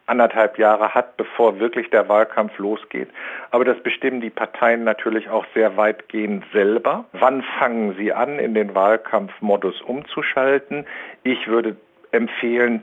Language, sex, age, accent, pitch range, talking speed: German, male, 50-69, German, 105-125 Hz, 135 wpm